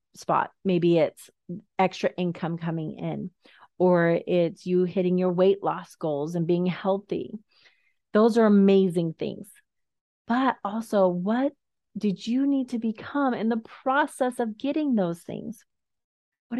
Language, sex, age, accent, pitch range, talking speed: English, female, 30-49, American, 180-230 Hz, 135 wpm